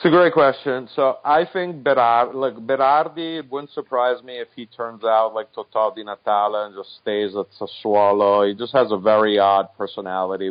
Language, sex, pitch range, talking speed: English, male, 100-120 Hz, 190 wpm